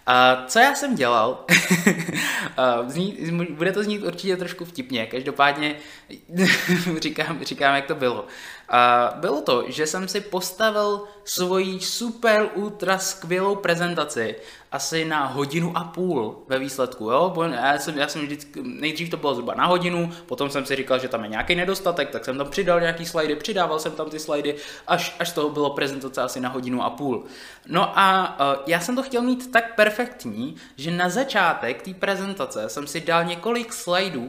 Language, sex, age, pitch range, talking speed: Czech, male, 20-39, 145-190 Hz, 170 wpm